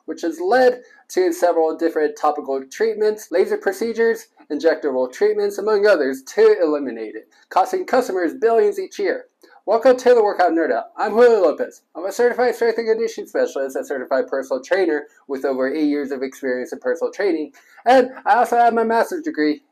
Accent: American